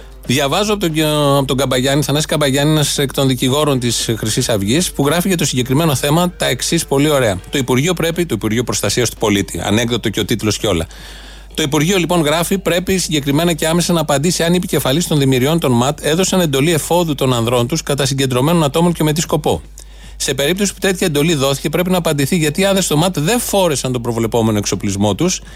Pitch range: 130-170 Hz